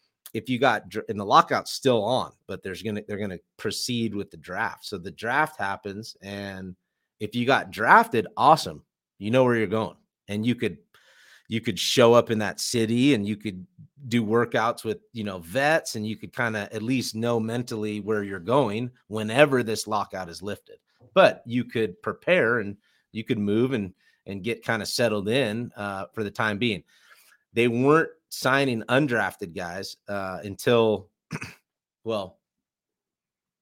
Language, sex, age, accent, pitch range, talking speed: English, male, 30-49, American, 105-125 Hz, 175 wpm